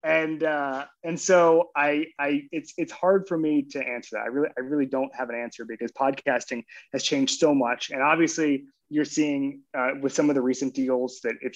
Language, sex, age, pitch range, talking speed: English, male, 20-39, 110-135 Hz, 215 wpm